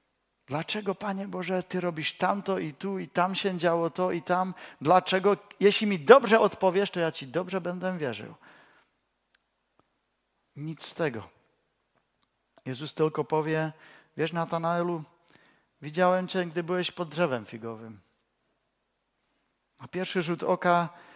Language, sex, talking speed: Czech, male, 130 wpm